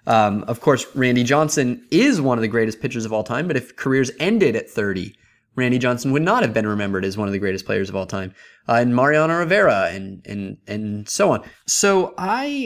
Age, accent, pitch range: 20-39, American, 110-145 Hz